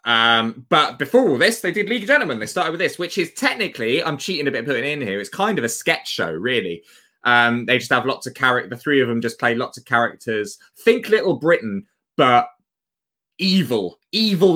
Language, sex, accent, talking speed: English, male, British, 220 wpm